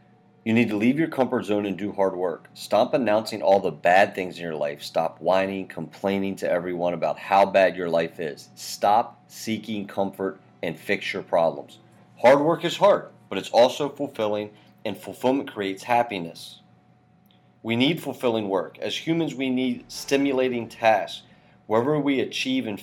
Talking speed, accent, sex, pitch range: 170 wpm, American, male, 95-125 Hz